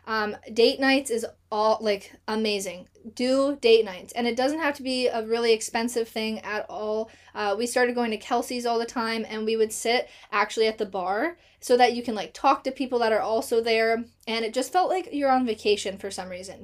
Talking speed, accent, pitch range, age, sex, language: 225 wpm, American, 210-245 Hz, 10-29, female, English